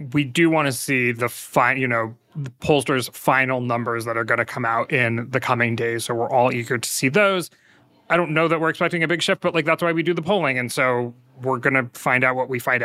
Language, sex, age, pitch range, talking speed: English, male, 30-49, 125-160 Hz, 265 wpm